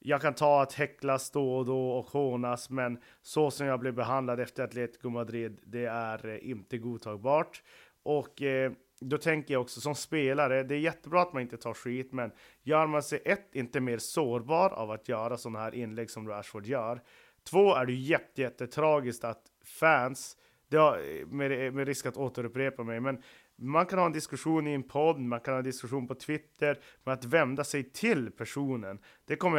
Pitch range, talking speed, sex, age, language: 120-150 Hz, 185 wpm, male, 30-49, Swedish